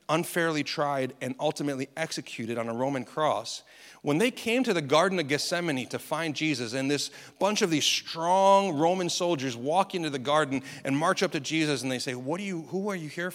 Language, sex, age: English, male, 40-59